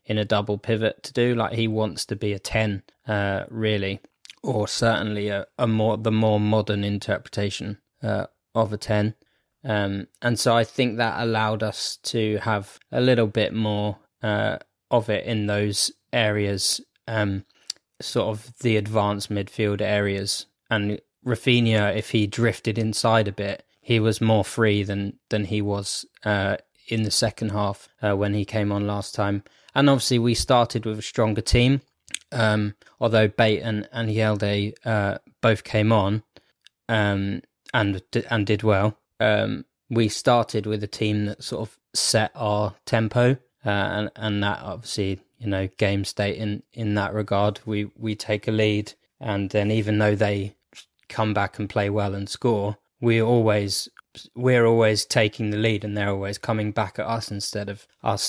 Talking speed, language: 170 wpm, English